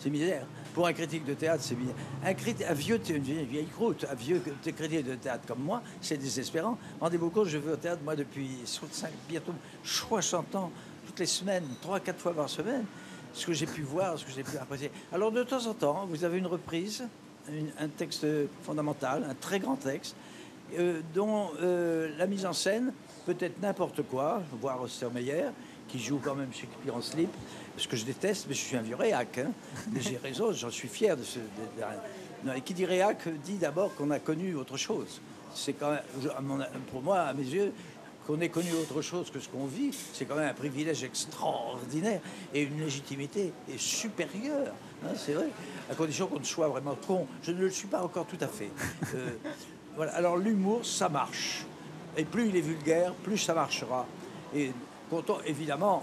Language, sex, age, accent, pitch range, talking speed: French, male, 60-79, French, 145-185 Hz, 200 wpm